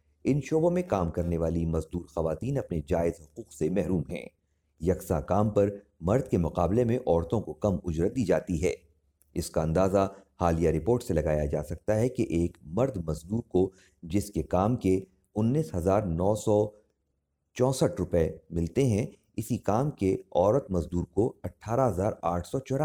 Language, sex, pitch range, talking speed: Hindi, male, 85-105 Hz, 160 wpm